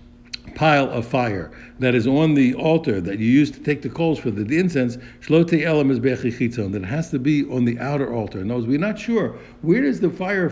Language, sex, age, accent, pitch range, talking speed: English, male, 60-79, American, 120-145 Hz, 210 wpm